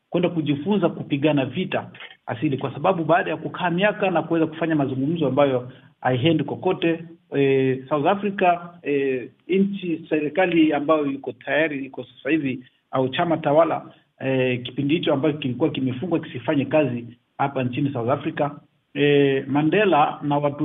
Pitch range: 130-160 Hz